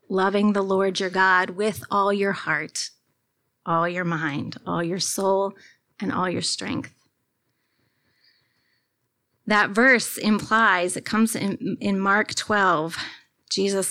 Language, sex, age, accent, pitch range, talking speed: English, female, 30-49, American, 185-215 Hz, 125 wpm